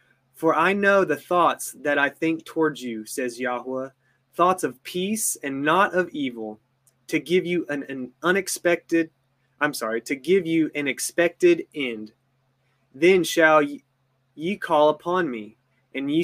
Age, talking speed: 20-39, 150 wpm